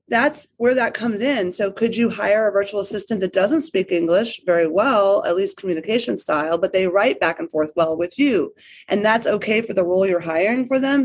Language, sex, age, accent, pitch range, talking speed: English, female, 30-49, American, 190-260 Hz, 225 wpm